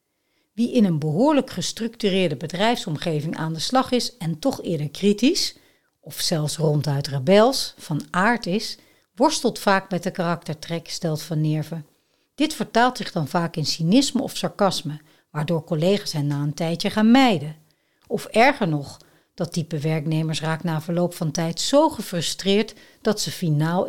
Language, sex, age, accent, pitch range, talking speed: Dutch, female, 60-79, Dutch, 155-220 Hz, 155 wpm